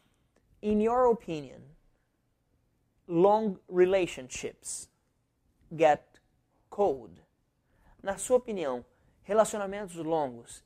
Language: Portuguese